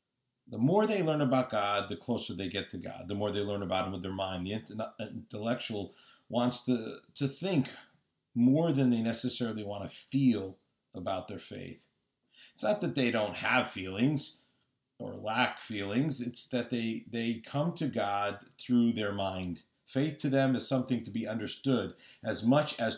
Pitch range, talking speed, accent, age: 100-130 Hz, 180 wpm, American, 50-69